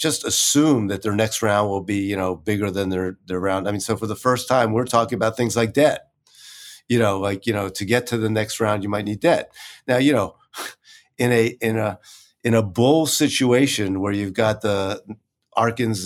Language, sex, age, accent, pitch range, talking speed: English, male, 50-69, American, 100-125 Hz, 220 wpm